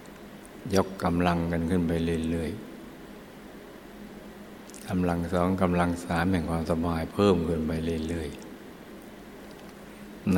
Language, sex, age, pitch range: Thai, male, 60-79, 80-90 Hz